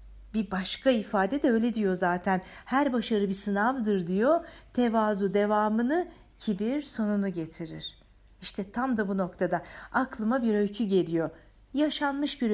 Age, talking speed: 60-79, 135 wpm